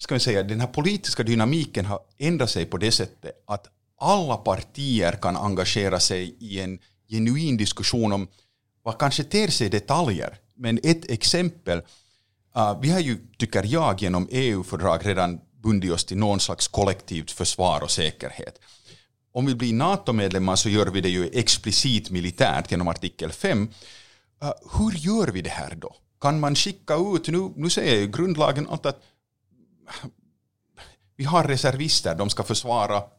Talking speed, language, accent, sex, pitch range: 155 wpm, Swedish, Finnish, male, 100-140 Hz